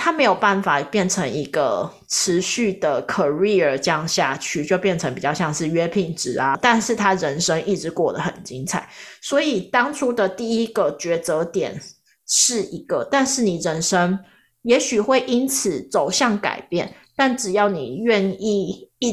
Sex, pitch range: female, 175-225 Hz